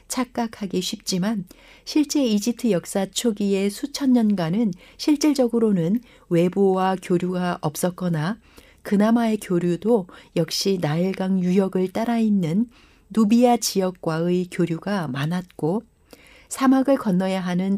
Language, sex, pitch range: Korean, female, 175-225 Hz